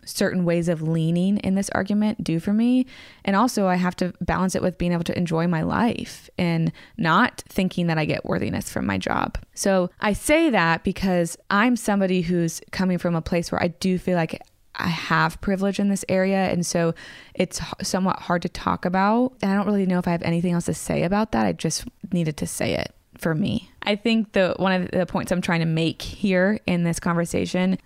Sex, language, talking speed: female, English, 220 wpm